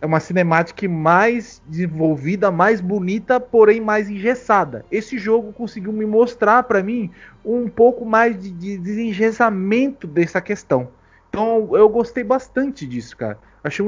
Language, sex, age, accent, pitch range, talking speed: Portuguese, male, 30-49, Brazilian, 160-205 Hz, 140 wpm